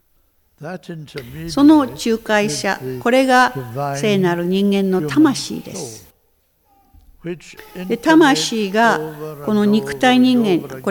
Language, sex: Japanese, female